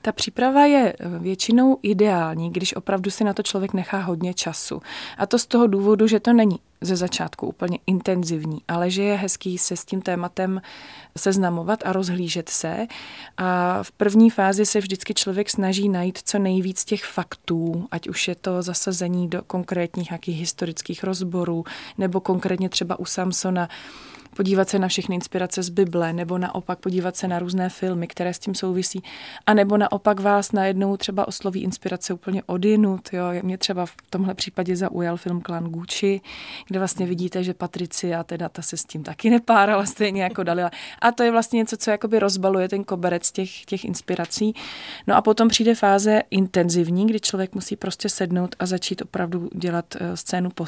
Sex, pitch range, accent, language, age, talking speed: female, 180-200 Hz, native, Czech, 20-39, 170 wpm